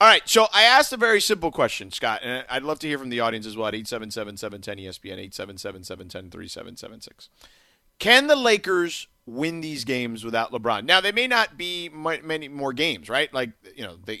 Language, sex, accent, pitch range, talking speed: English, male, American, 115-175 Hz, 185 wpm